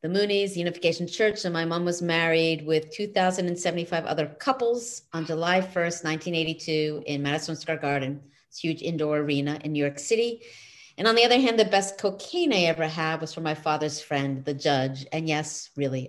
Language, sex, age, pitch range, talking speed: English, female, 40-59, 155-200 Hz, 185 wpm